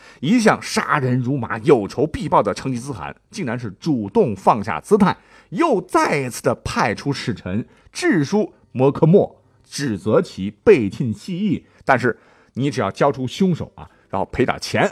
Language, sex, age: Chinese, male, 50-69